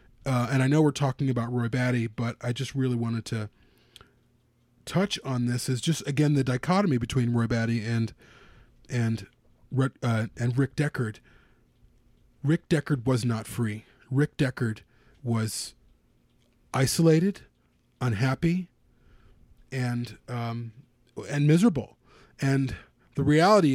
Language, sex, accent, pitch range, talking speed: English, male, American, 115-135 Hz, 125 wpm